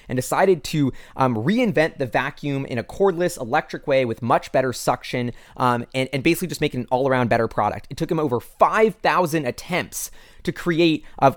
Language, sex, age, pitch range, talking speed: English, male, 20-39, 130-175 Hz, 190 wpm